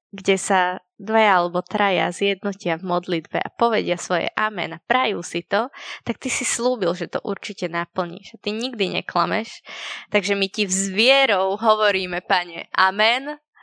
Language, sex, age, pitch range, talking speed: Slovak, female, 20-39, 180-220 Hz, 155 wpm